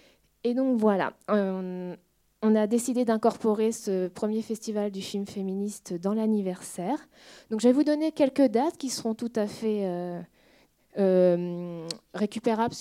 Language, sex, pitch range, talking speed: French, female, 200-270 Hz, 145 wpm